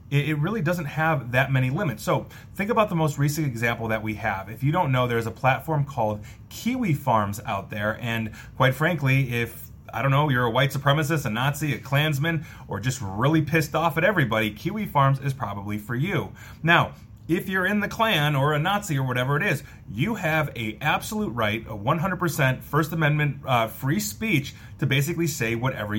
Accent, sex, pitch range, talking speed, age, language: American, male, 110-150 Hz, 200 wpm, 30-49, English